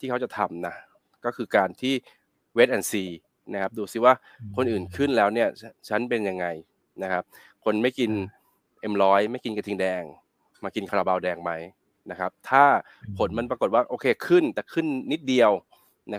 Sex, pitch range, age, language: male, 95-115 Hz, 20-39, Thai